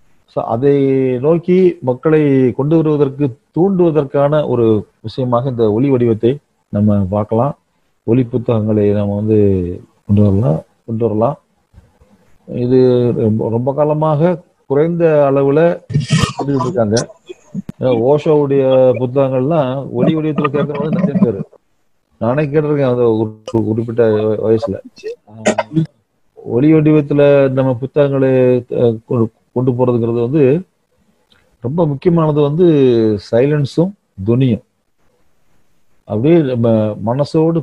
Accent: native